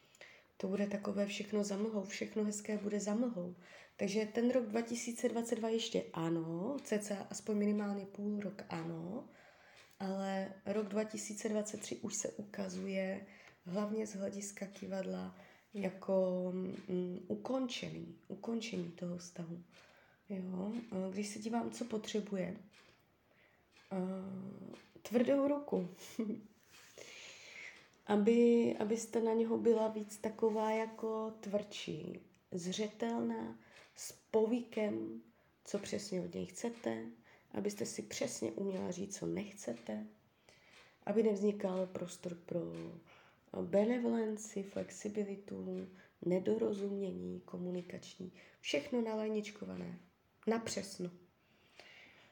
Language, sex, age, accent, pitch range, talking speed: Czech, female, 20-39, native, 185-220 Hz, 90 wpm